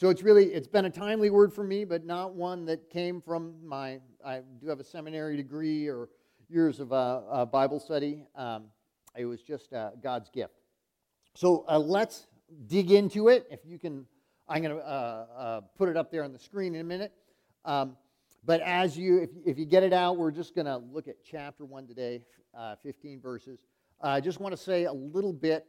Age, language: 50-69, English